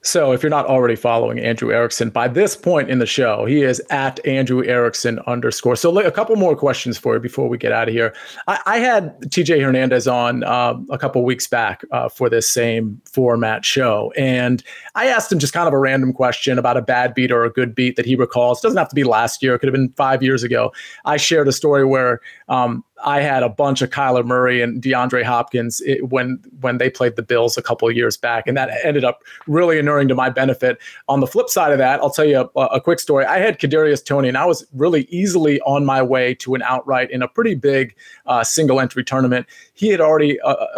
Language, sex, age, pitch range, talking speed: English, male, 30-49, 125-145 Hz, 235 wpm